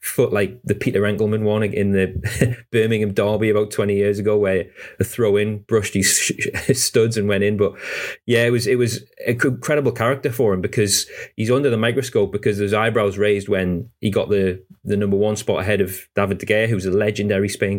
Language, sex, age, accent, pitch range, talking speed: English, male, 30-49, British, 95-115 Hz, 205 wpm